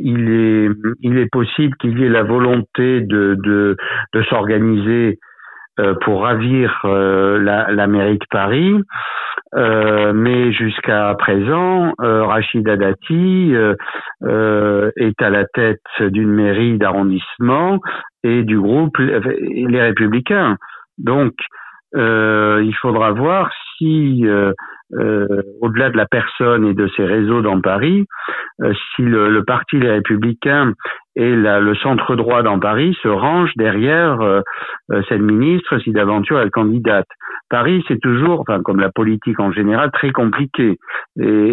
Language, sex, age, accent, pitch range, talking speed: French, male, 60-79, French, 105-130 Hz, 140 wpm